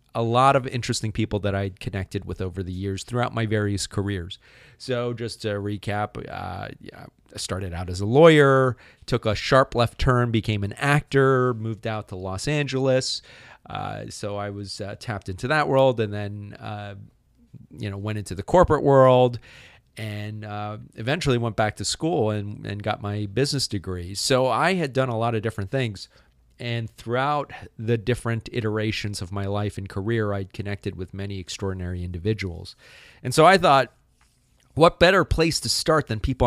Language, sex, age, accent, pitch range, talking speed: English, male, 30-49, American, 100-125 Hz, 180 wpm